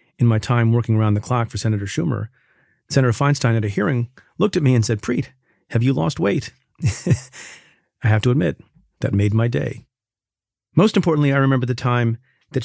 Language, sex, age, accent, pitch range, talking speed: English, male, 40-59, American, 110-135 Hz, 190 wpm